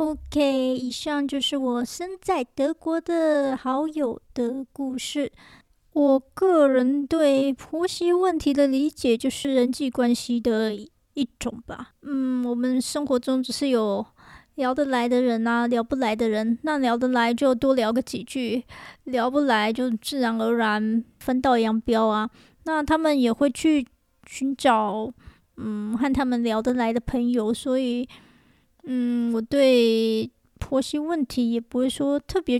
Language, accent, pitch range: Chinese, American, 235-280 Hz